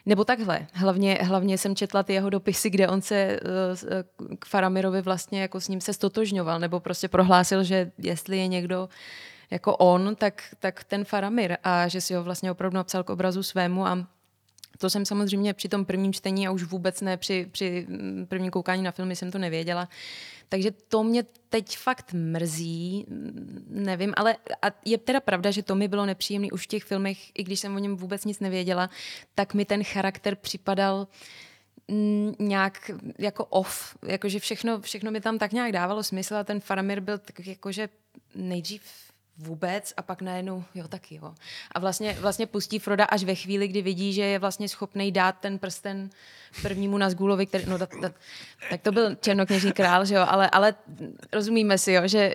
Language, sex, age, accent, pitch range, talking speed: Czech, female, 20-39, native, 185-205 Hz, 180 wpm